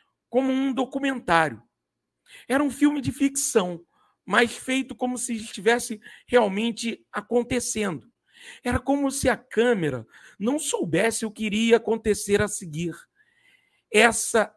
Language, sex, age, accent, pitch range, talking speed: Portuguese, male, 50-69, Brazilian, 170-235 Hz, 120 wpm